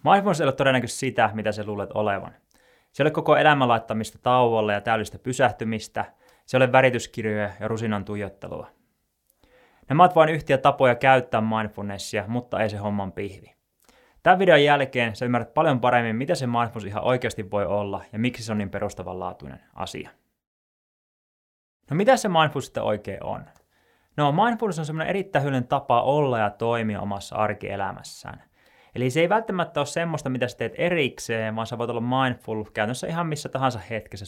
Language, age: Finnish, 20-39